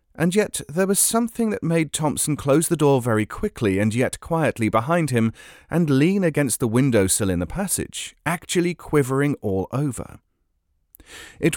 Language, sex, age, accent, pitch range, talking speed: English, male, 30-49, British, 105-160 Hz, 165 wpm